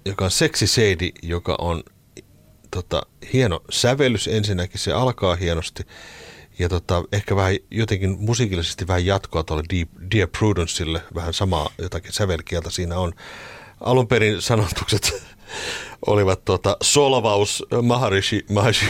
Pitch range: 90-120 Hz